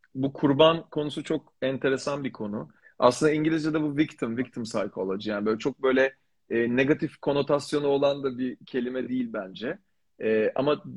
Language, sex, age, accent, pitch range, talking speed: Turkish, male, 40-59, native, 125-155 Hz, 140 wpm